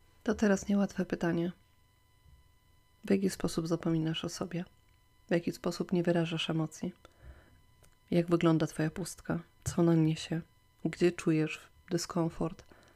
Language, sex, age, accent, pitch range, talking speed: Polish, female, 30-49, native, 130-175 Hz, 120 wpm